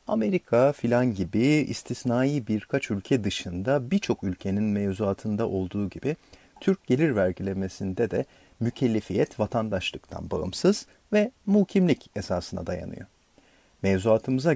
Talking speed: 100 wpm